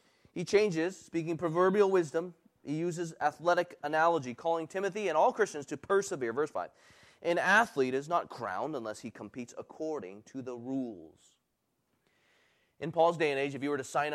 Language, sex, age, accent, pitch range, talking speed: English, male, 30-49, American, 125-175 Hz, 170 wpm